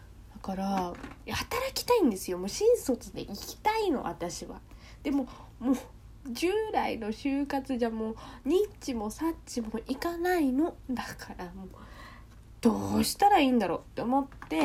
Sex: female